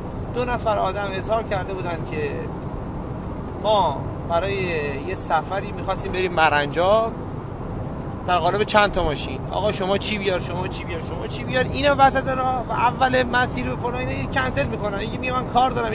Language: Persian